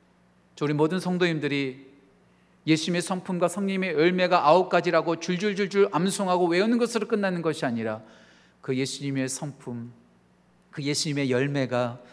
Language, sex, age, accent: Korean, male, 40-59, native